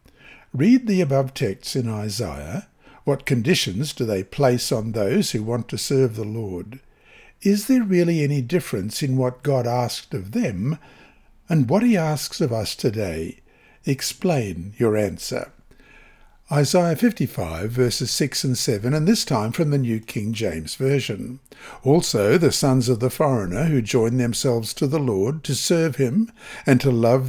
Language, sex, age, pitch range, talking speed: English, male, 60-79, 120-160 Hz, 160 wpm